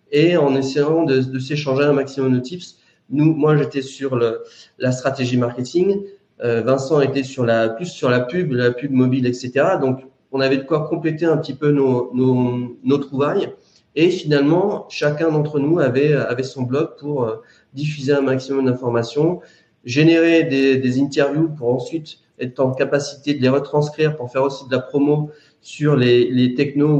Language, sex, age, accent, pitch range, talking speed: French, male, 30-49, French, 125-150 Hz, 180 wpm